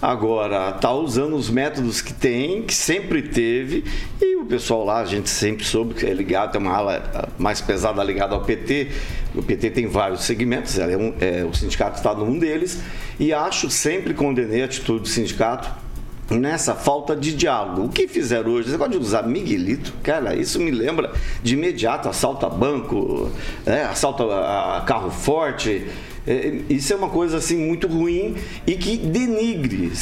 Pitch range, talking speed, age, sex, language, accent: 120-190 Hz, 165 wpm, 50-69, male, Portuguese, Brazilian